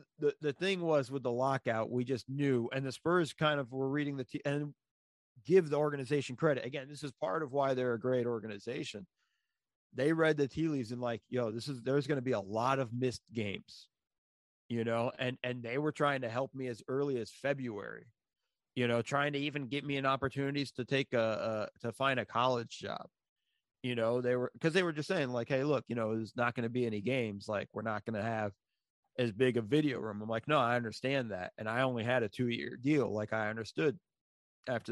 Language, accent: English, American